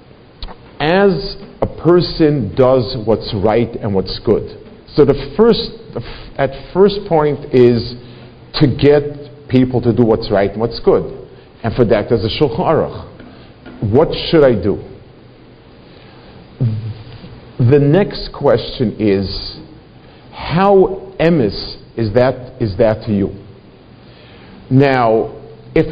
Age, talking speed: 50-69, 120 wpm